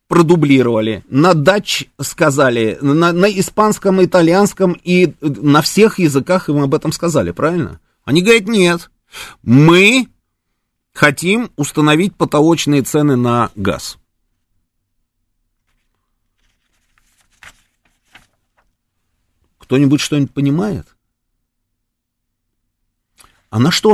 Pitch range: 100-155 Hz